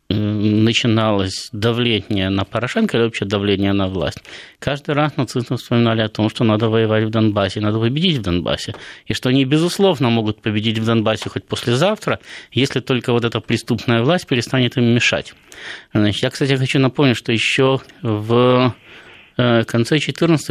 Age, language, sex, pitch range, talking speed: 20-39, Russian, male, 110-145 Hz, 155 wpm